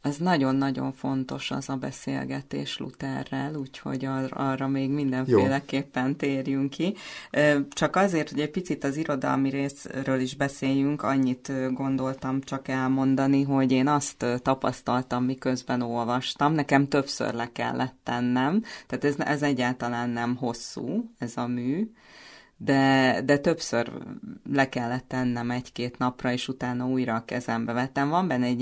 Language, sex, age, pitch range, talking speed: English, female, 30-49, 120-140 Hz, 135 wpm